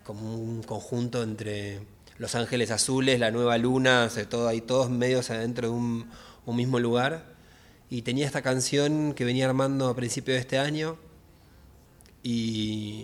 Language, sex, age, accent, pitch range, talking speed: Spanish, male, 20-39, Argentinian, 110-125 Hz, 170 wpm